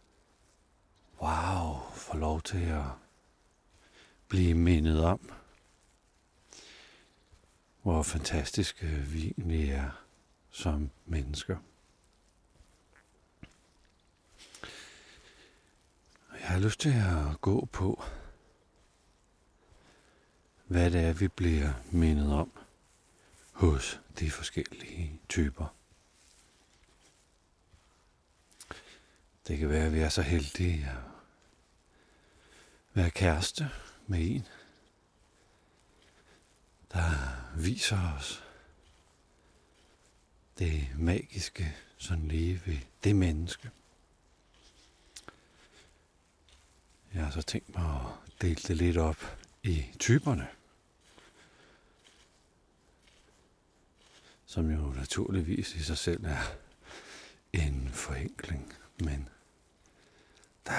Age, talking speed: 60-79, 75 wpm